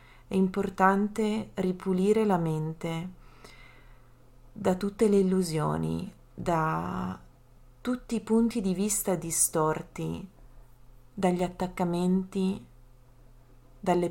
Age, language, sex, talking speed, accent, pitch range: 30-49, Italian, female, 80 wpm, native, 150-190 Hz